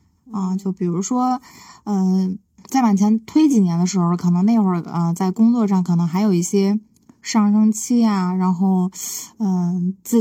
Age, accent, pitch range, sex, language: 20-39, native, 190-235 Hz, female, Chinese